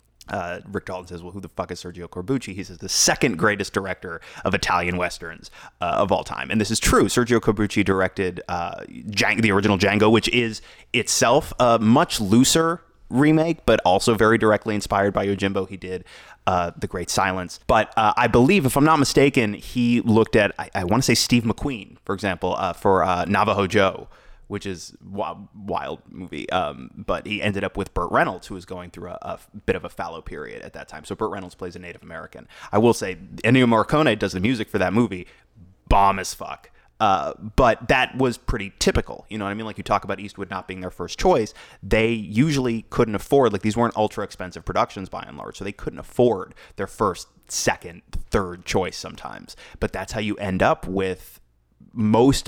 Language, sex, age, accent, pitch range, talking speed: English, male, 30-49, American, 95-115 Hz, 205 wpm